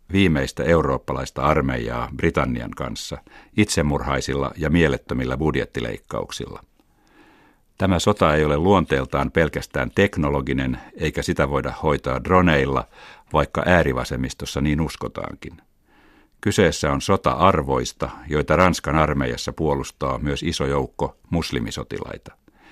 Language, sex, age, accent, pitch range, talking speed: Finnish, male, 60-79, native, 70-85 Hz, 100 wpm